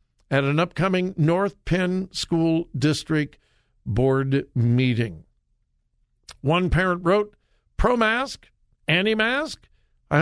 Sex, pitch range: male, 135-200 Hz